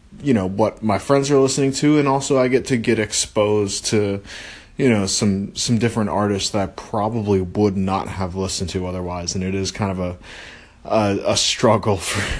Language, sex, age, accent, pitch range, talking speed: English, male, 20-39, American, 95-120 Hz, 200 wpm